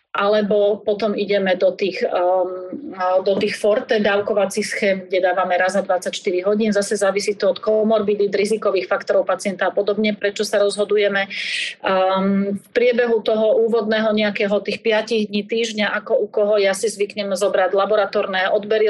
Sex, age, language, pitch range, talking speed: female, 30-49, Slovak, 200-225 Hz, 155 wpm